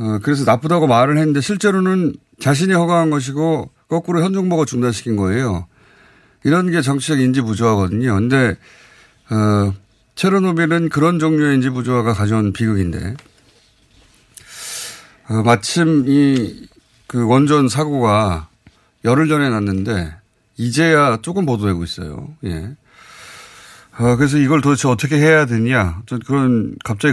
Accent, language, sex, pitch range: native, Korean, male, 110-155 Hz